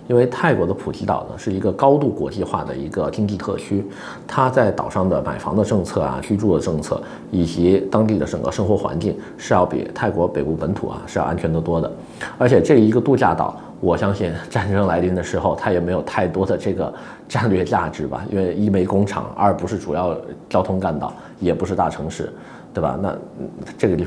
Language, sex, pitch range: Chinese, male, 90-115 Hz